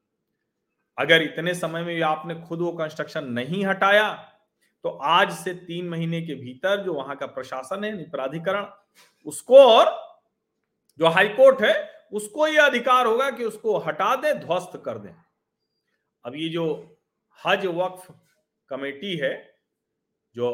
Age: 40-59